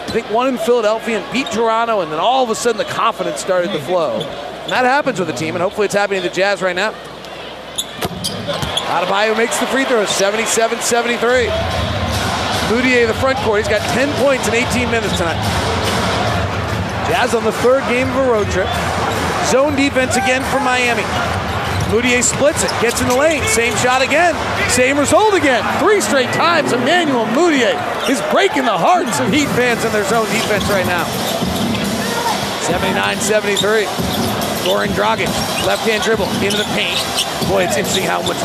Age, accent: 40-59, American